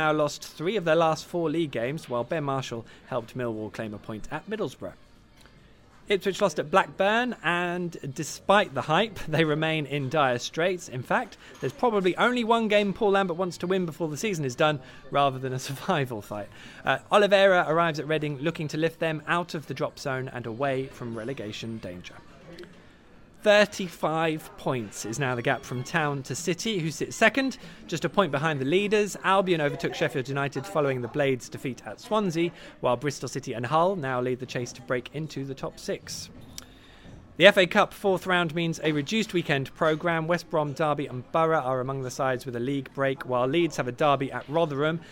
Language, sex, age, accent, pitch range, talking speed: English, male, 20-39, British, 130-175 Hz, 195 wpm